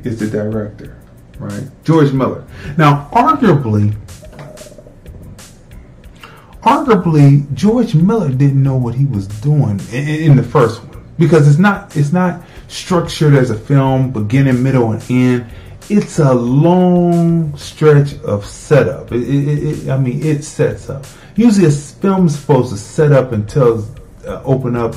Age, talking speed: 30-49, 140 wpm